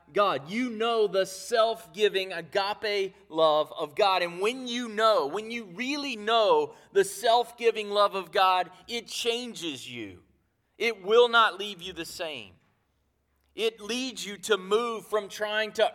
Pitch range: 155-215 Hz